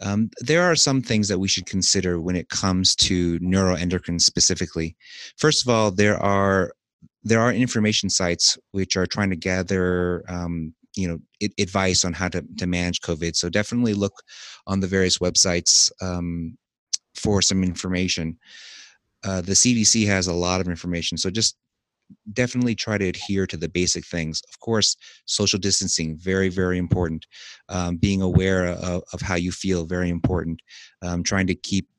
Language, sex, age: English, male, 30-49